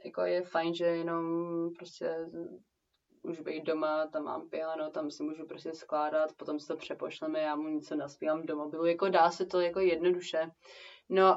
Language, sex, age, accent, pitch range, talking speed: Czech, female, 20-39, native, 165-185 Hz, 180 wpm